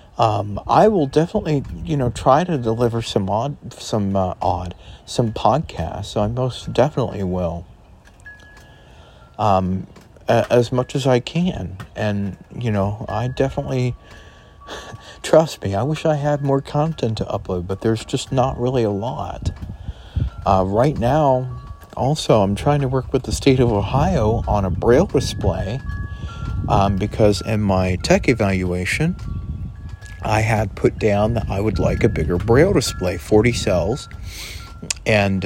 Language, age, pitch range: English, 40-59, 95-125 Hz